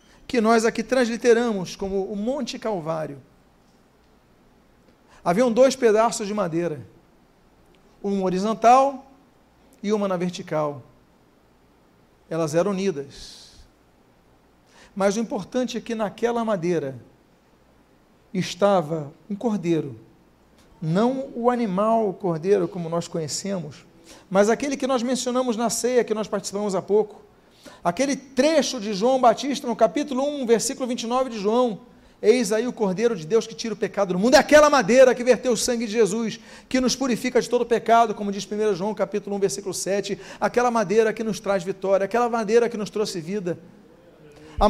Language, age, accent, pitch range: Portuguese, 50-69, Brazilian, 195-250 Hz